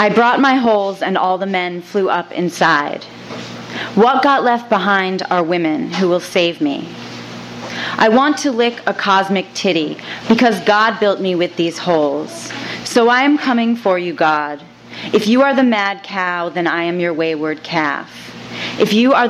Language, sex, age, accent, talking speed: English, female, 30-49, American, 175 wpm